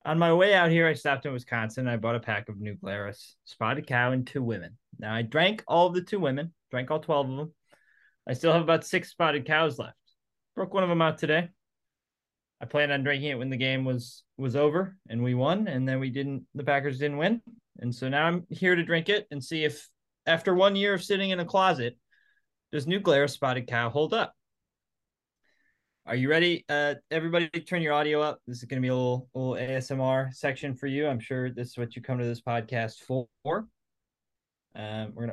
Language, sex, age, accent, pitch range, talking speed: English, male, 20-39, American, 125-165 Hz, 220 wpm